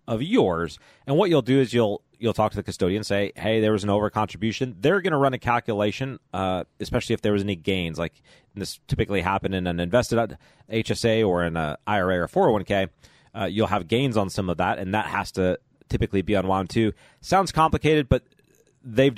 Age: 30-49